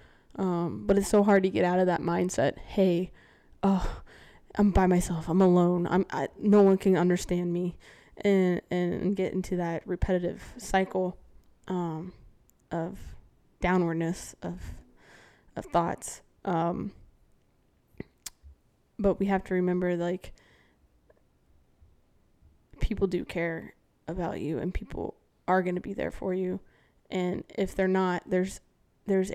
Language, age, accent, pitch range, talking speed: English, 20-39, American, 175-190 Hz, 130 wpm